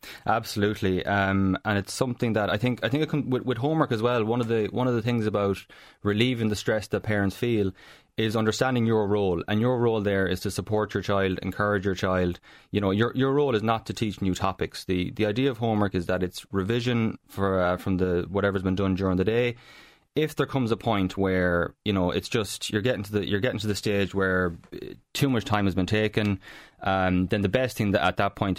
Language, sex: English, male